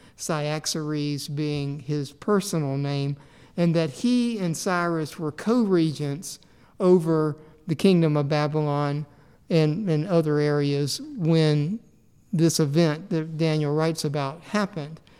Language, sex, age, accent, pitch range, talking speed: English, male, 50-69, American, 150-180 Hz, 115 wpm